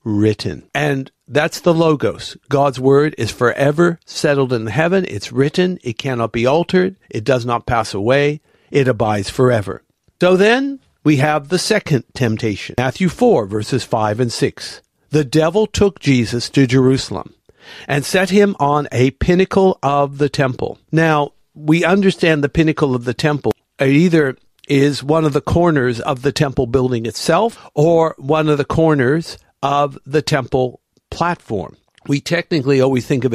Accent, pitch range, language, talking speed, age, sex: American, 125-160 Hz, English, 160 wpm, 60-79, male